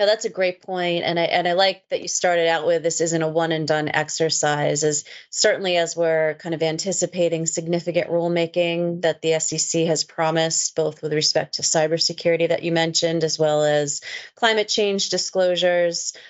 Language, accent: English, American